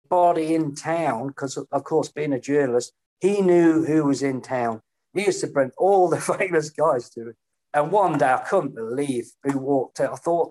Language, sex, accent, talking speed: English, male, British, 205 wpm